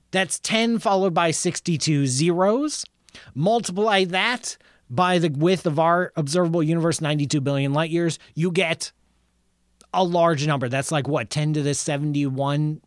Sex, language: male, English